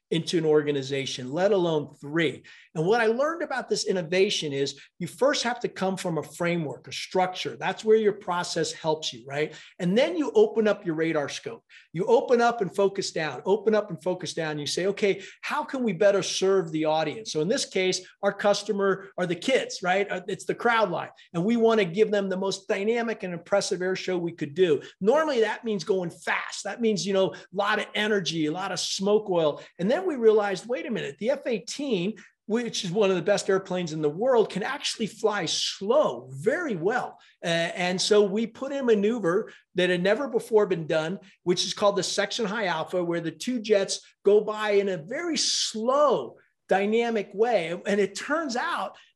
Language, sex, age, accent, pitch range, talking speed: English, male, 40-59, American, 175-220 Hz, 210 wpm